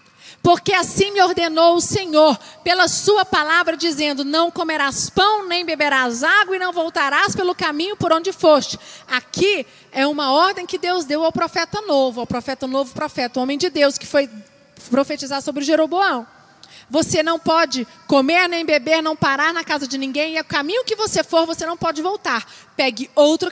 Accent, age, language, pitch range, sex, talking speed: Brazilian, 40-59, Portuguese, 265-365 Hz, female, 180 wpm